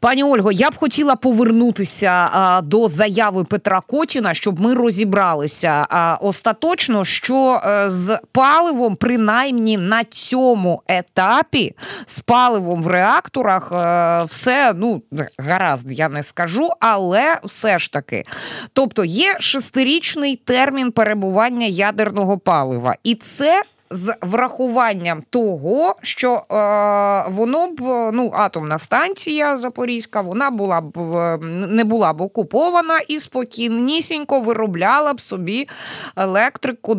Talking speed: 115 wpm